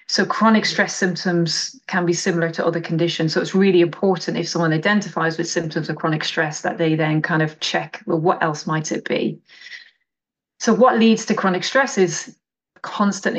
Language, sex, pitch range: English, female, 170-200 Hz